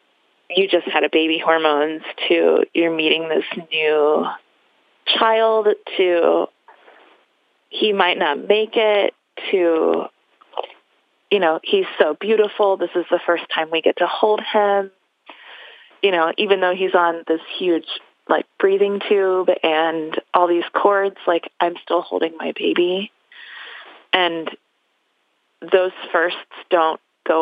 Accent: American